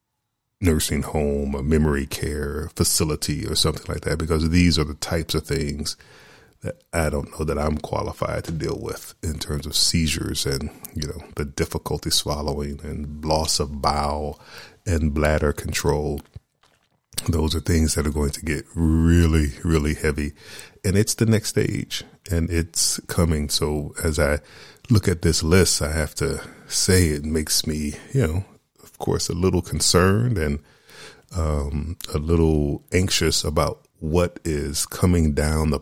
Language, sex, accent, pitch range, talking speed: English, male, American, 75-90 Hz, 160 wpm